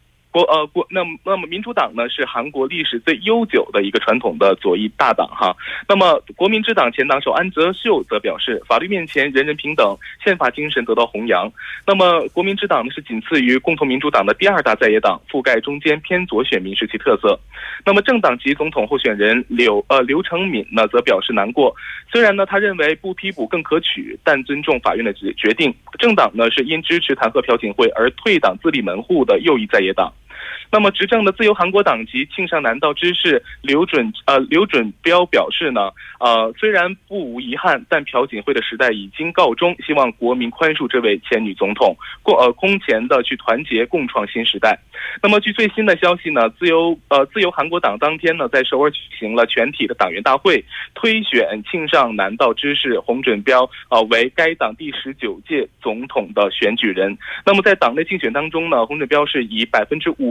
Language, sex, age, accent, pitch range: Korean, male, 20-39, Chinese, 135-200 Hz